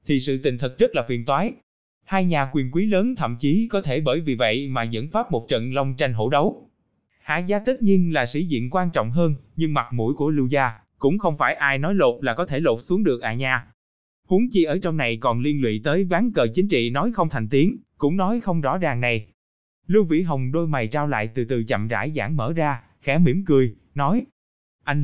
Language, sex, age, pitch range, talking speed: Vietnamese, male, 20-39, 125-180 Hz, 240 wpm